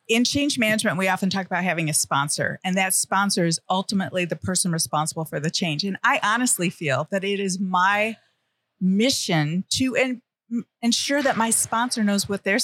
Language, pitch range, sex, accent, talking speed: English, 175-230 Hz, female, American, 180 wpm